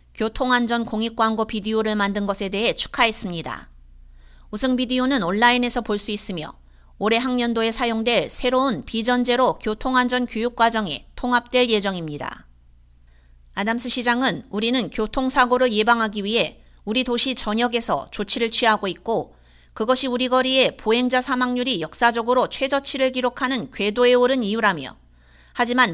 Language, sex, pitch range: Korean, female, 205-250 Hz